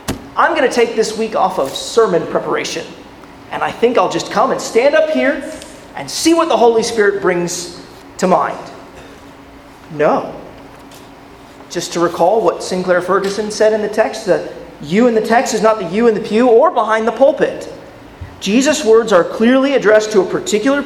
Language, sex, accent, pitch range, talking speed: English, male, American, 180-235 Hz, 185 wpm